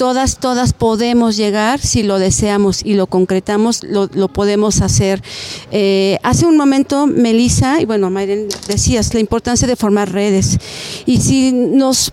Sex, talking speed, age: female, 155 wpm, 40-59